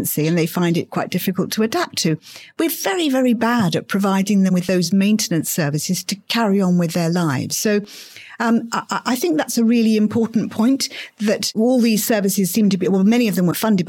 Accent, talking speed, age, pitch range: British, 210 wpm, 50-69, 170-240 Hz